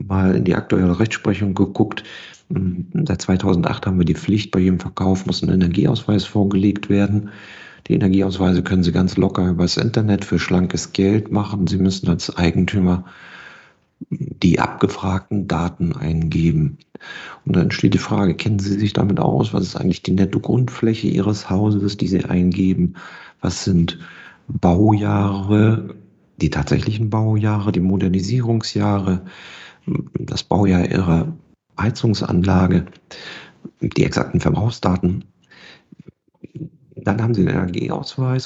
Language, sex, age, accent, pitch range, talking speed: German, male, 50-69, German, 95-120 Hz, 130 wpm